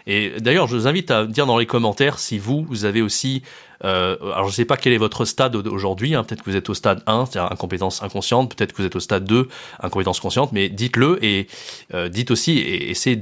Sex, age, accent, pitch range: male, 30-49, French, 100-125 Hz